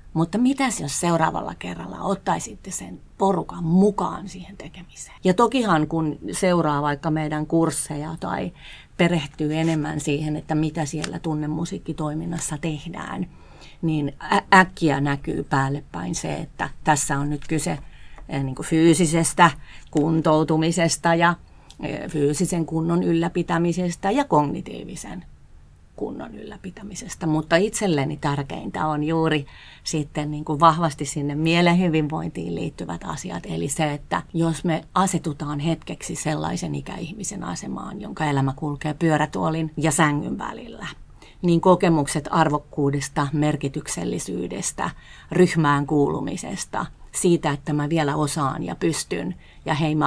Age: 30-49